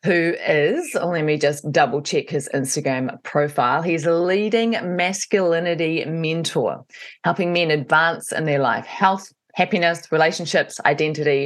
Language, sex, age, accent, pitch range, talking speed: English, female, 20-39, Australian, 150-200 Hz, 135 wpm